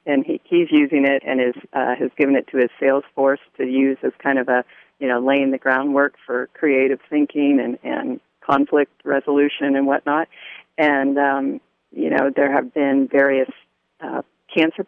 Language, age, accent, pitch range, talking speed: English, 40-59, American, 135-165 Hz, 180 wpm